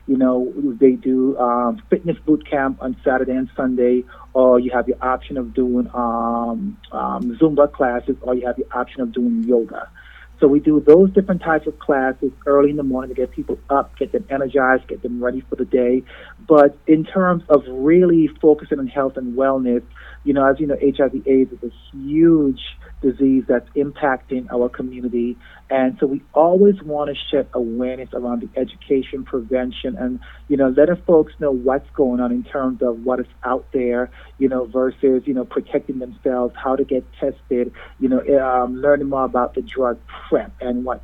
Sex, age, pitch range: male, 30-49, 125-145 Hz